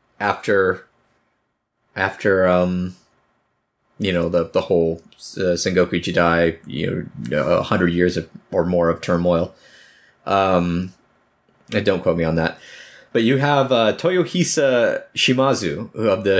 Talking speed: 135 wpm